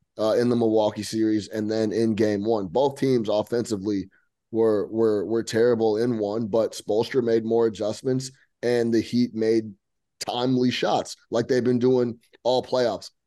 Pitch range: 115-135 Hz